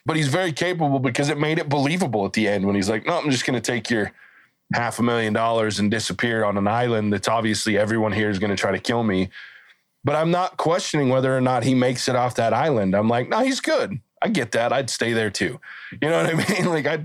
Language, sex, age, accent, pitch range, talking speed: English, male, 20-39, American, 110-145 Hz, 260 wpm